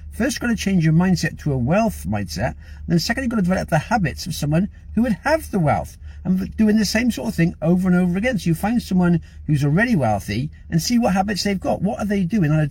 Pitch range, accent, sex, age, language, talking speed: 140-195 Hz, British, male, 50-69, English, 270 wpm